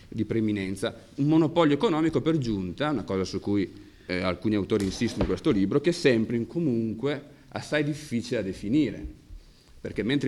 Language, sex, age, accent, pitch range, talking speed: Italian, male, 40-59, native, 95-115 Hz, 165 wpm